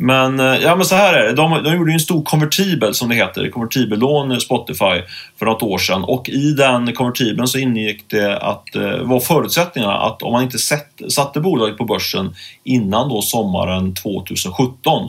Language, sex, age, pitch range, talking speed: Swedish, male, 30-49, 105-135 Hz, 180 wpm